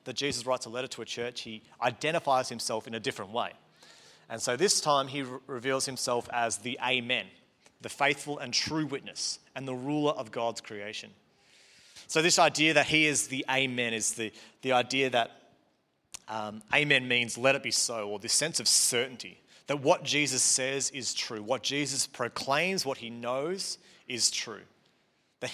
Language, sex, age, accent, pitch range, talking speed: English, male, 30-49, Australian, 115-145 Hz, 180 wpm